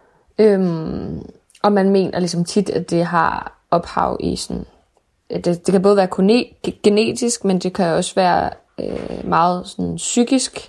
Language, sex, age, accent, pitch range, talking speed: Danish, female, 20-39, native, 175-200 Hz, 155 wpm